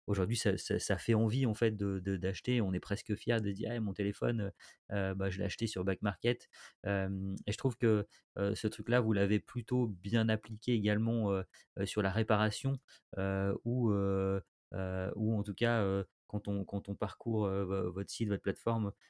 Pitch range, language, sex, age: 95-110 Hz, French, male, 30-49